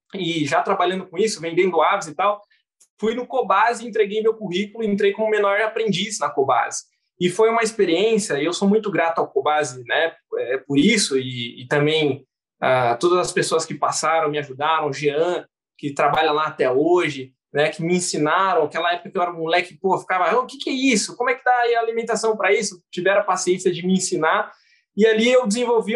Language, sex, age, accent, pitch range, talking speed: Portuguese, male, 20-39, Brazilian, 175-235 Hz, 205 wpm